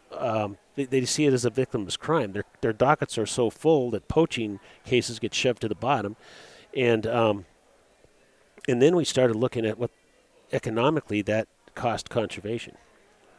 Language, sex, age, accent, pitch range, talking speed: English, male, 40-59, American, 105-130 Hz, 160 wpm